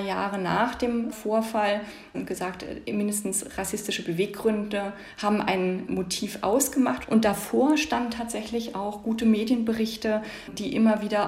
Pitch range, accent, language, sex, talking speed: 190-225 Hz, German, German, female, 120 wpm